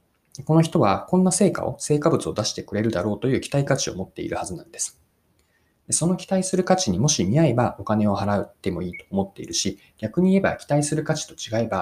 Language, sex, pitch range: Japanese, male, 105-160 Hz